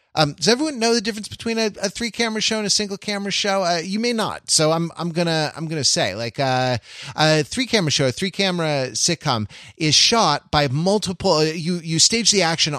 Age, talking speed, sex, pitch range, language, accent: 30-49, 220 wpm, male, 115-170 Hz, English, American